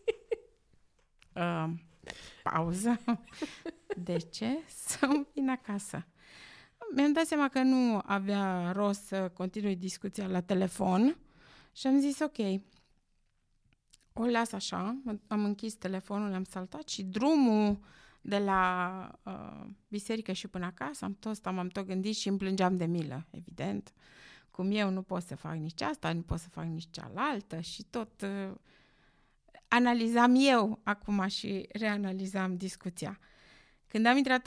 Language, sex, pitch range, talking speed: Romanian, female, 185-235 Hz, 135 wpm